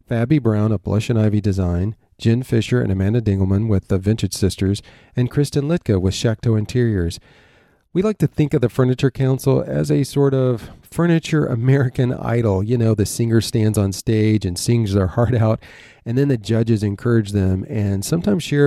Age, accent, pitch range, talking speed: 40-59, American, 105-130 Hz, 185 wpm